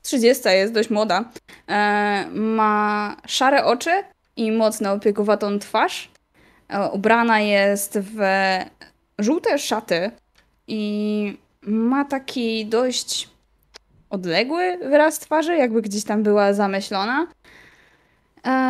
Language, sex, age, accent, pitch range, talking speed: Polish, female, 20-39, native, 190-230 Hz, 100 wpm